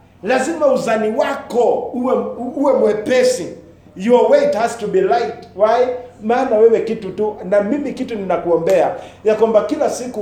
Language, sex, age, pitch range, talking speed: English, male, 50-69, 150-215 Hz, 140 wpm